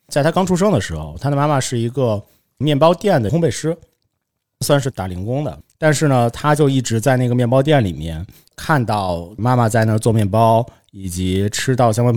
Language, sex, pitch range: Chinese, male, 100-135 Hz